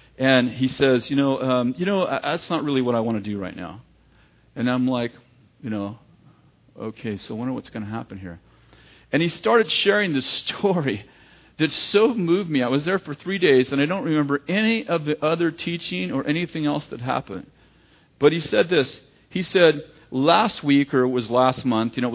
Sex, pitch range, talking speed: male, 115-150 Hz, 210 wpm